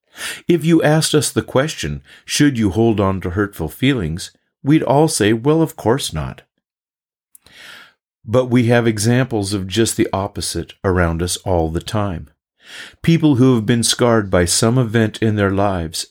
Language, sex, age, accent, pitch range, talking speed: English, male, 50-69, American, 90-125 Hz, 165 wpm